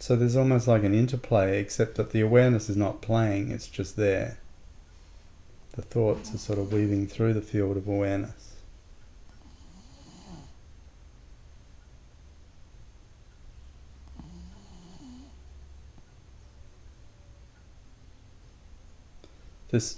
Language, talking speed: English, 85 wpm